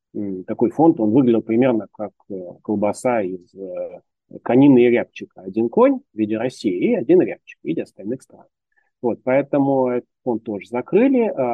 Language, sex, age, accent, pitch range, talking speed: Russian, male, 30-49, native, 110-160 Hz, 145 wpm